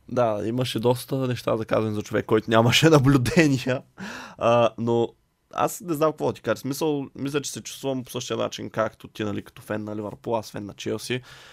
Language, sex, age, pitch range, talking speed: Bulgarian, male, 20-39, 110-140 Hz, 205 wpm